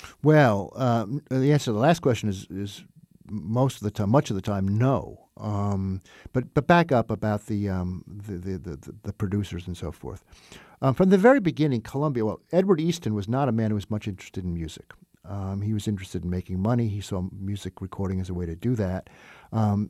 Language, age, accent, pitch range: English, 50-69, American, 100-130 Hz